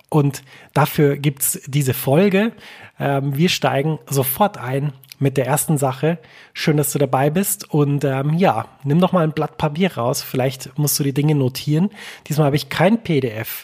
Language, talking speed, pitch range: German, 180 wpm, 135-160 Hz